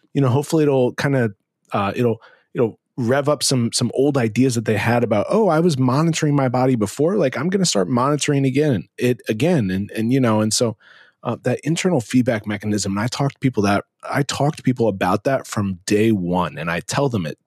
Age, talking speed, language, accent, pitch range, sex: 30-49, 230 wpm, English, American, 110-145 Hz, male